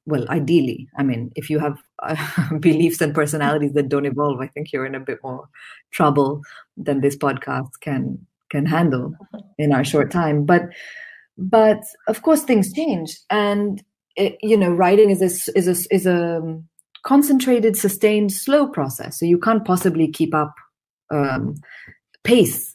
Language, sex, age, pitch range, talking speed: English, female, 30-49, 145-190 Hz, 160 wpm